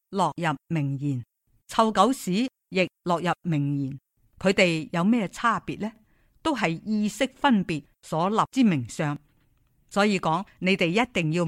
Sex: female